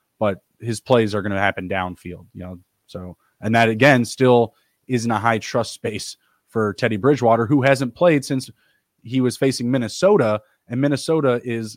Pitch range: 105-125 Hz